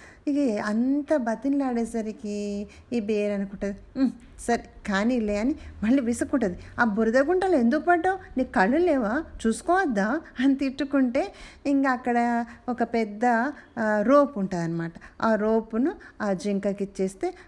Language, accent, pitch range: Telugu, native, 200-265 Hz